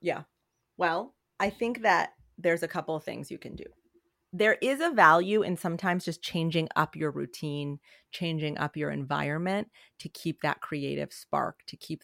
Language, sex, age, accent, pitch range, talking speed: English, female, 30-49, American, 150-195 Hz, 175 wpm